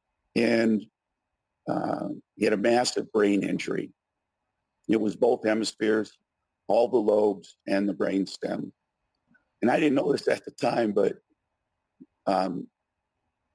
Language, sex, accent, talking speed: English, male, American, 130 wpm